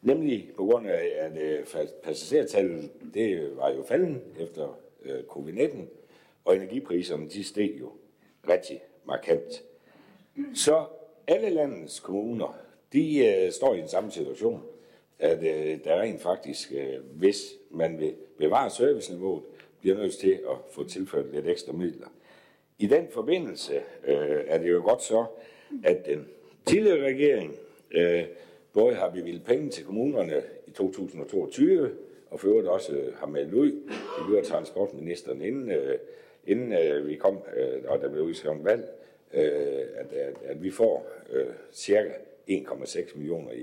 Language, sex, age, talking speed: Danish, male, 60-79, 145 wpm